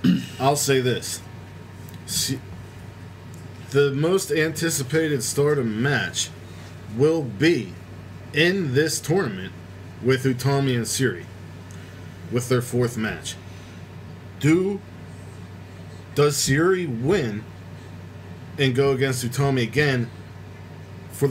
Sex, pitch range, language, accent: male, 95-135 Hz, English, American